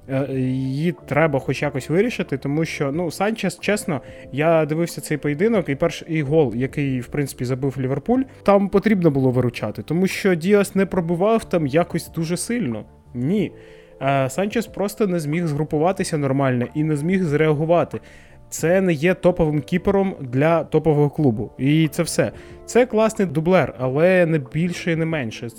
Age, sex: 20-39, male